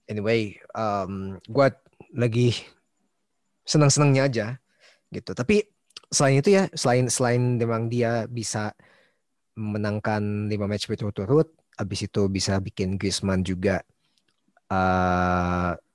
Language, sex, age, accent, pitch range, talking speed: Indonesian, male, 20-39, native, 100-125 Hz, 105 wpm